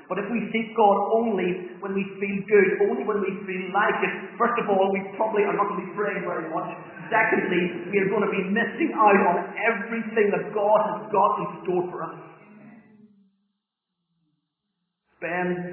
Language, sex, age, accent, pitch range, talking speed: English, male, 40-59, British, 160-200 Hz, 185 wpm